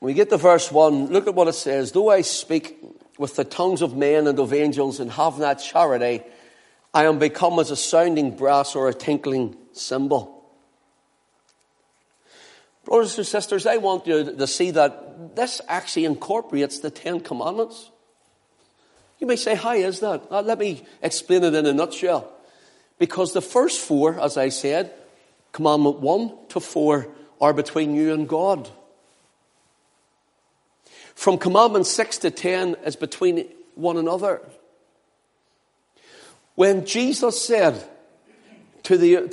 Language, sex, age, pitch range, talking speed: English, male, 50-69, 145-195 Hz, 145 wpm